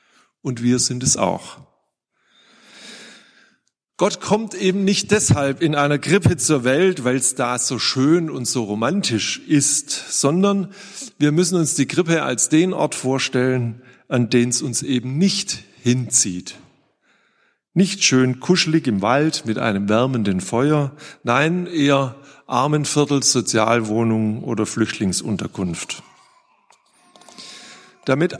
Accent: German